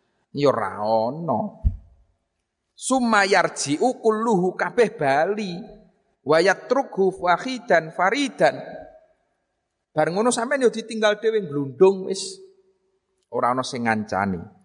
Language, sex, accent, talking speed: Indonesian, male, native, 80 wpm